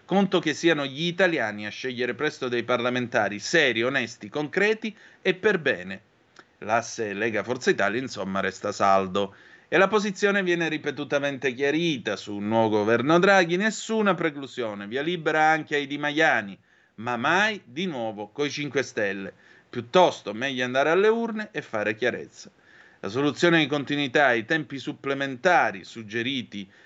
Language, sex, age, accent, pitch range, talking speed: Italian, male, 30-49, native, 115-165 Hz, 145 wpm